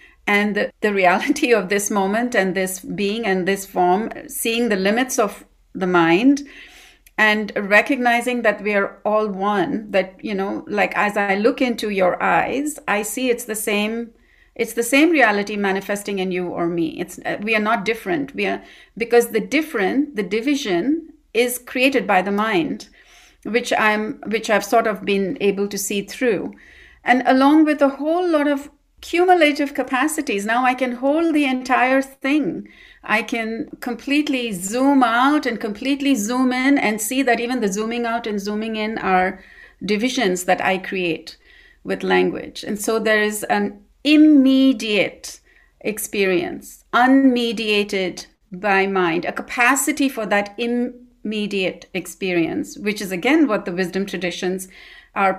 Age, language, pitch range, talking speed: 60-79, English, 200-265 Hz, 155 wpm